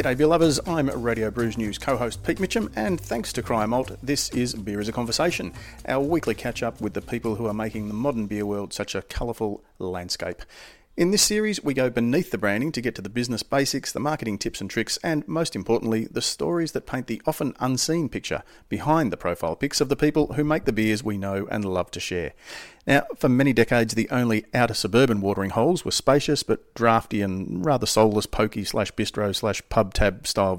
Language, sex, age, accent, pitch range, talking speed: English, male, 40-59, Australian, 105-135 Hz, 210 wpm